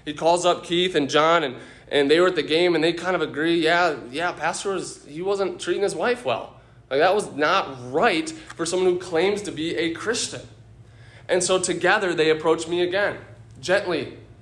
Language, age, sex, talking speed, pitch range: English, 20-39, male, 205 wpm, 145-185 Hz